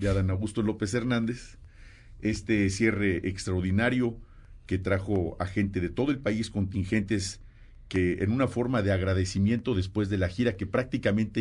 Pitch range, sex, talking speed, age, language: 95-115 Hz, male, 155 wpm, 50-69, Spanish